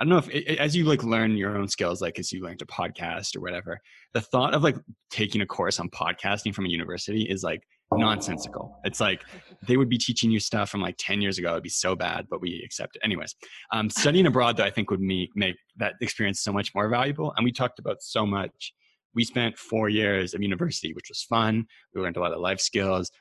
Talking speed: 240 wpm